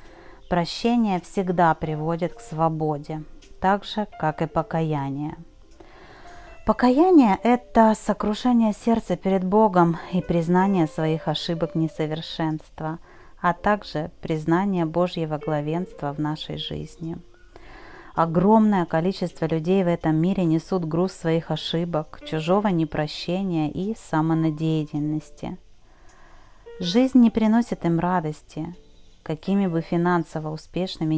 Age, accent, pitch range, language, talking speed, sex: 30-49, native, 160-195 Hz, Russian, 100 wpm, female